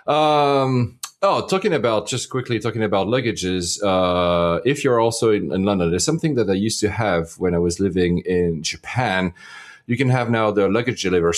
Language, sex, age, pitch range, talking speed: English, male, 30-49, 95-120 Hz, 190 wpm